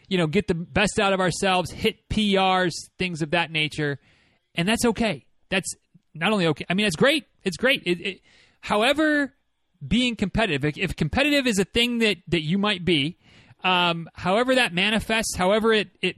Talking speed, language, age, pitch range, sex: 175 wpm, English, 30-49, 155-200 Hz, male